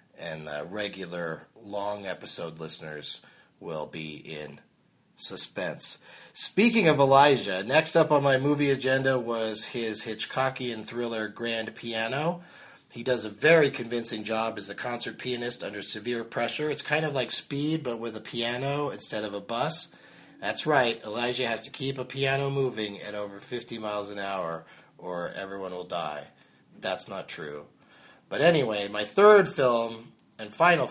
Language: English